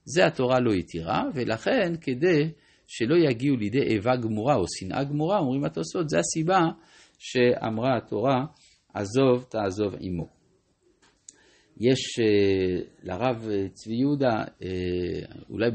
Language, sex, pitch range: Hebrew, male, 105-145 Hz